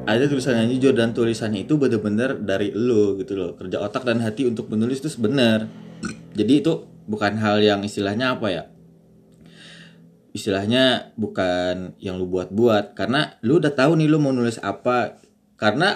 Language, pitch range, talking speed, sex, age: Indonesian, 100-125 Hz, 160 wpm, male, 20-39